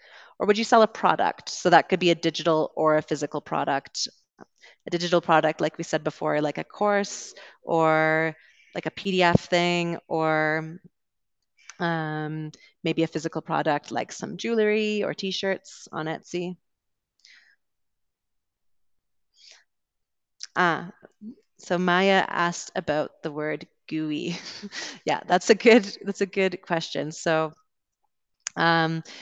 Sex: female